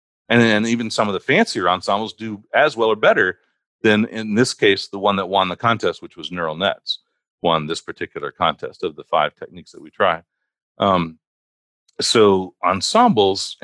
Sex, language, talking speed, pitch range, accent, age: male, English, 175 wpm, 85-110 Hz, American, 40-59